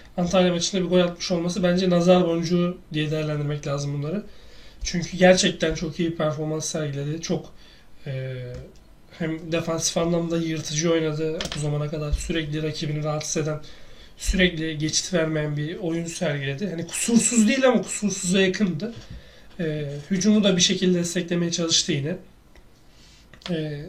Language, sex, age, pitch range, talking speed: Turkish, male, 40-59, 155-185 Hz, 135 wpm